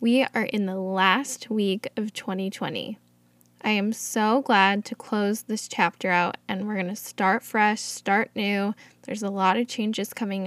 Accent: American